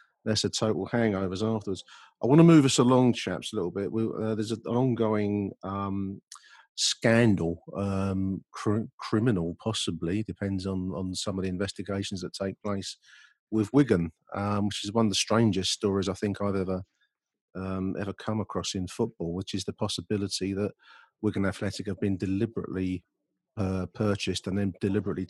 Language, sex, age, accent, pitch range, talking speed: English, male, 40-59, British, 95-105 Hz, 170 wpm